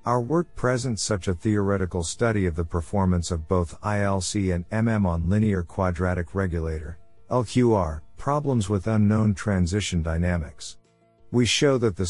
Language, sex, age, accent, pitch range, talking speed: English, male, 50-69, American, 85-110 Hz, 140 wpm